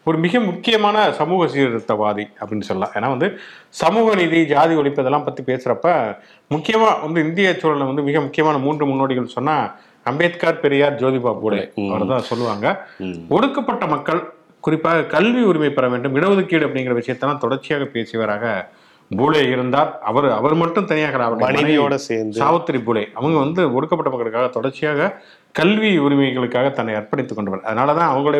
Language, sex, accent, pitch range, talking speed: English, male, Indian, 120-160 Hz, 115 wpm